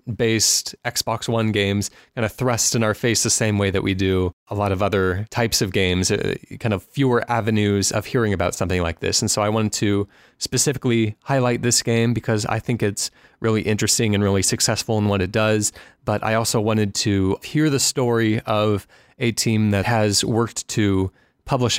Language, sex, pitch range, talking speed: English, male, 100-120 Hz, 195 wpm